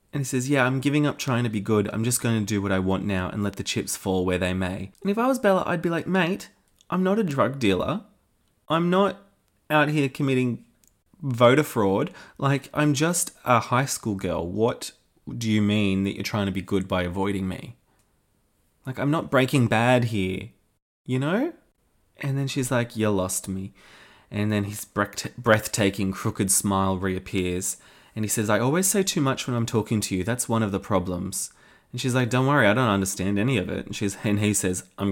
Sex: male